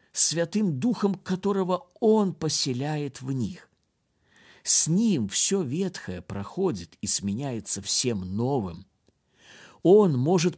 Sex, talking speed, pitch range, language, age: male, 100 wpm, 105-160 Hz, Russian, 50-69